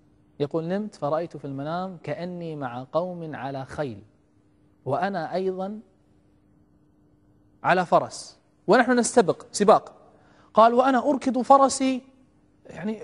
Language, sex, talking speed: English, male, 100 wpm